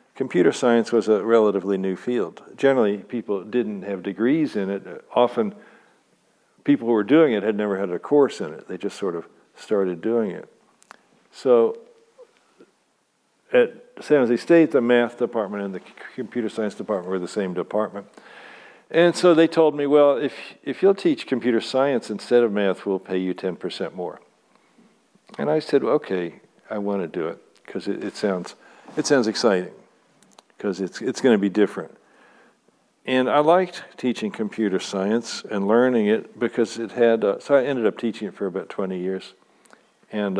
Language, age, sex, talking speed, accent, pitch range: English, 60-79, male, 175 wpm, American, 105-145 Hz